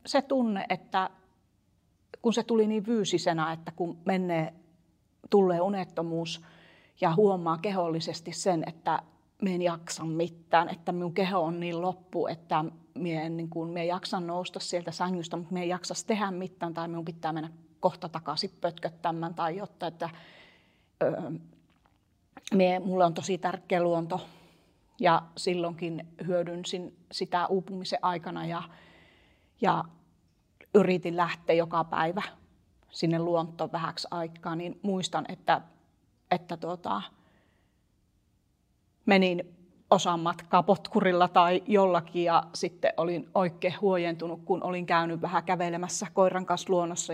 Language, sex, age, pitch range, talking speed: Finnish, female, 30-49, 165-190 Hz, 130 wpm